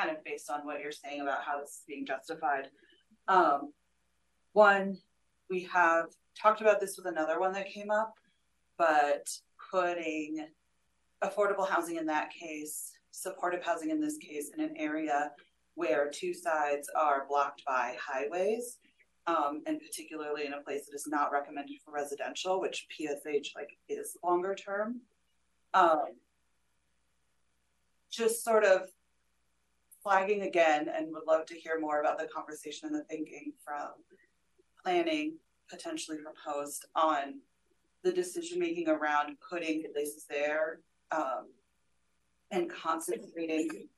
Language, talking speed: English, 135 wpm